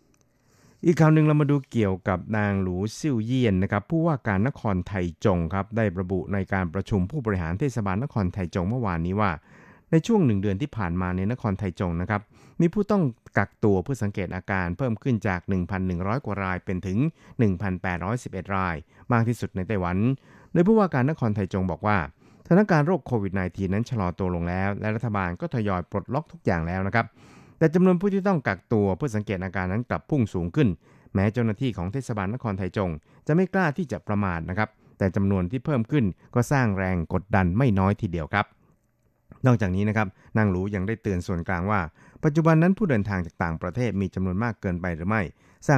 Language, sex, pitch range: Thai, male, 95-125 Hz